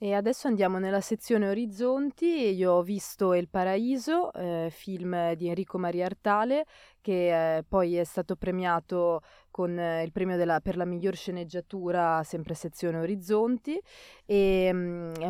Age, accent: 20-39, native